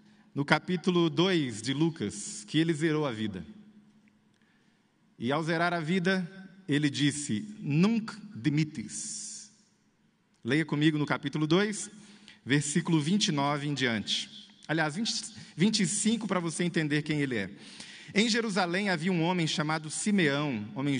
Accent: Brazilian